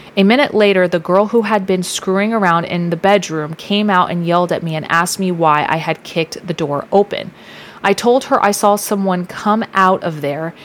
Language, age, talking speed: English, 30-49, 220 wpm